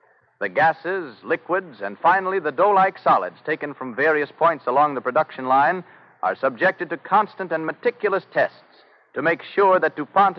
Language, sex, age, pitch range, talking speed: English, male, 60-79, 145-185 Hz, 160 wpm